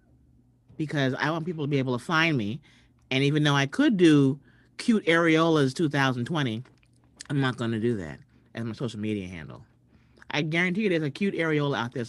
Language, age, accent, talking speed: English, 40-59, American, 190 wpm